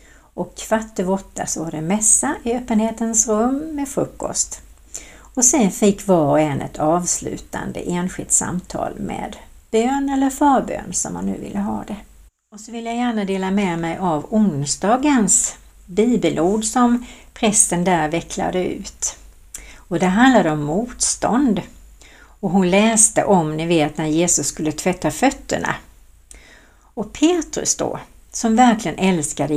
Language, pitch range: Swedish, 170-240 Hz